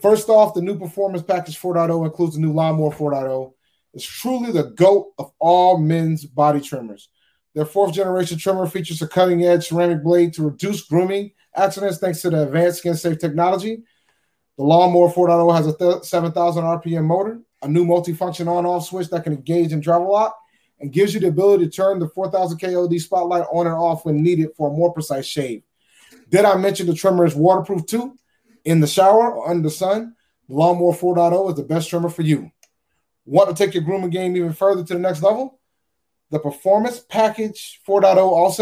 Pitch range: 155-185 Hz